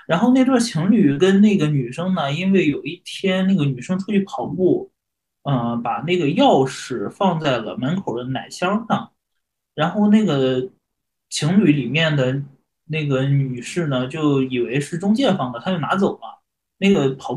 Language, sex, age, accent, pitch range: Chinese, male, 20-39, native, 130-185 Hz